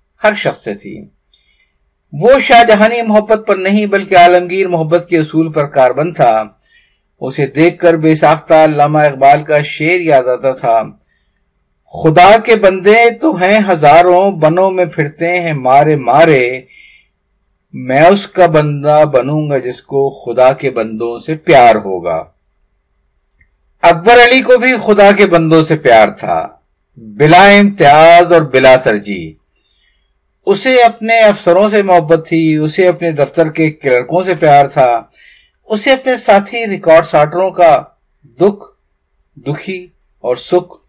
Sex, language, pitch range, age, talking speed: male, Urdu, 140-195 Hz, 50-69, 130 wpm